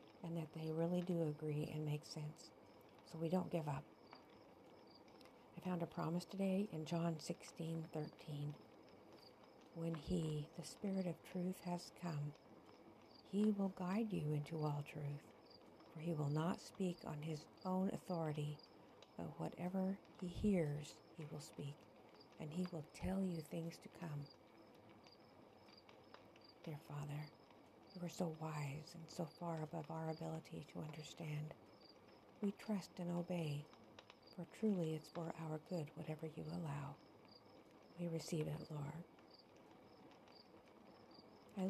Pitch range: 150-175 Hz